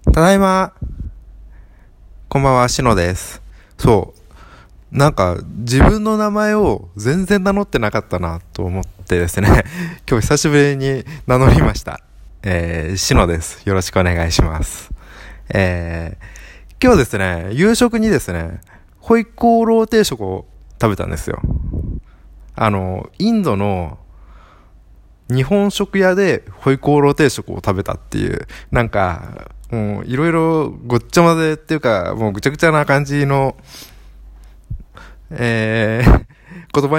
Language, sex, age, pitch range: Japanese, male, 20-39, 90-145 Hz